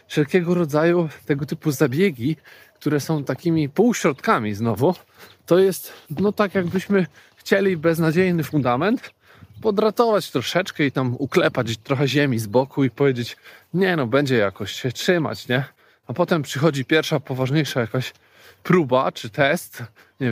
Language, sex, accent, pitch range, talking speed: Polish, male, native, 130-170 Hz, 135 wpm